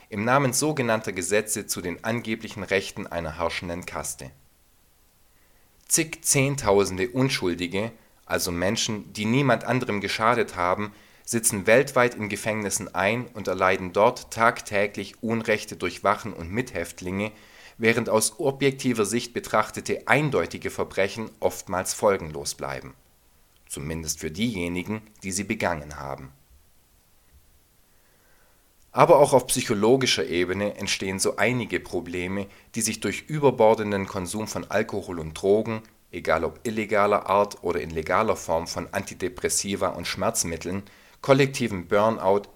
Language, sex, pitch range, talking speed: German, male, 85-115 Hz, 120 wpm